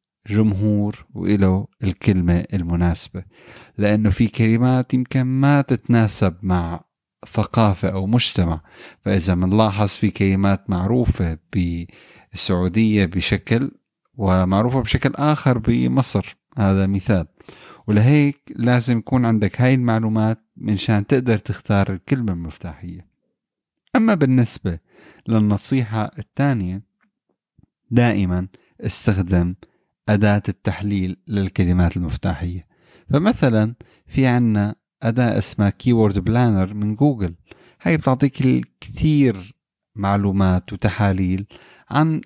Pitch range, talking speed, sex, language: 95-125 Hz, 90 wpm, male, Arabic